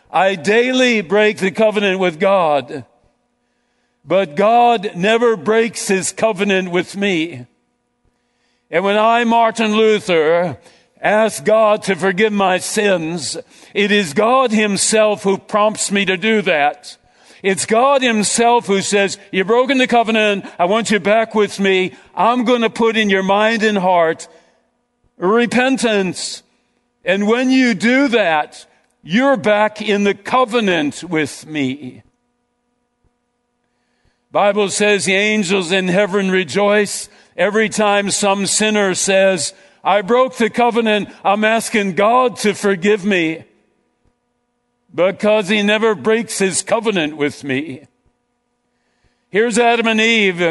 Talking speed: 125 wpm